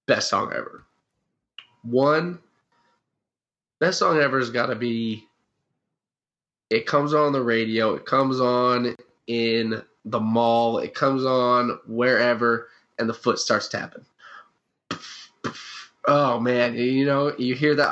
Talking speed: 125 wpm